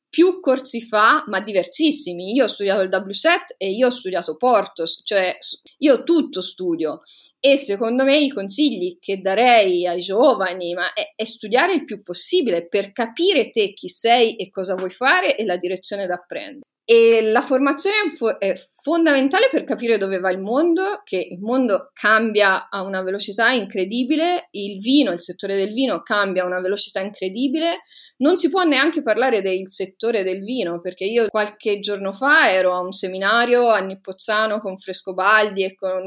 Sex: female